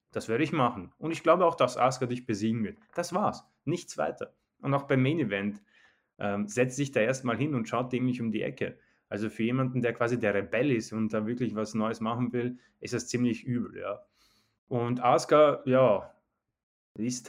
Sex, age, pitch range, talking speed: male, 20-39, 110-130 Hz, 200 wpm